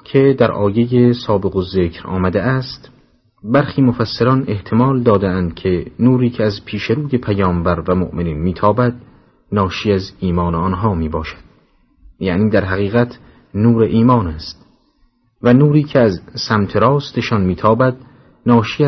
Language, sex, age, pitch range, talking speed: Persian, male, 40-59, 90-125 Hz, 130 wpm